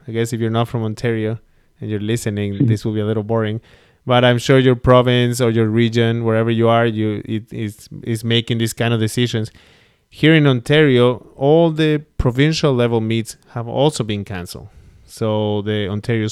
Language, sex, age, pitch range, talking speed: English, male, 20-39, 110-130 Hz, 180 wpm